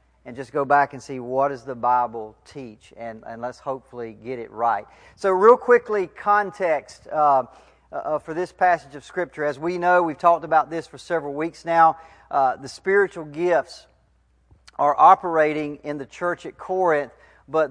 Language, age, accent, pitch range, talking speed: English, 40-59, American, 135-165 Hz, 175 wpm